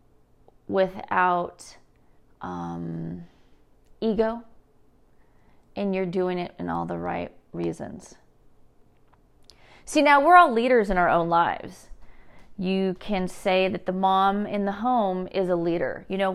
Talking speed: 130 wpm